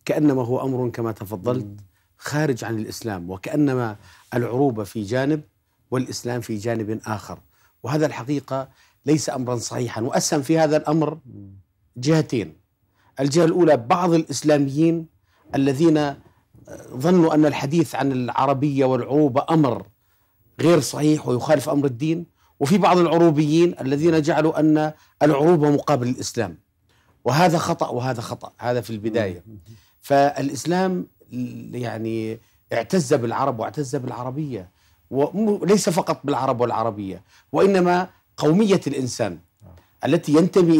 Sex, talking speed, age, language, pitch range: male, 110 wpm, 50-69, Arabic, 115-155 Hz